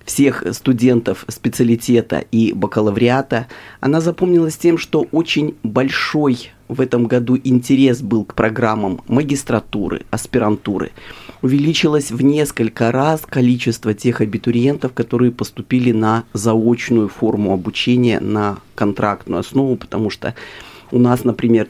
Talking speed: 115 wpm